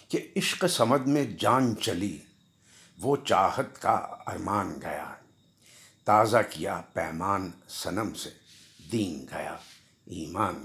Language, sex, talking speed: Urdu, male, 105 wpm